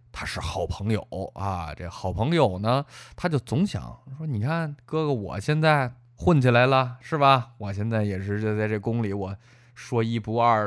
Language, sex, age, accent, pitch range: Chinese, male, 20-39, native, 95-140 Hz